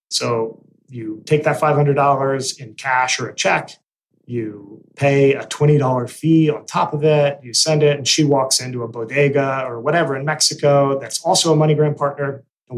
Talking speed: 180 wpm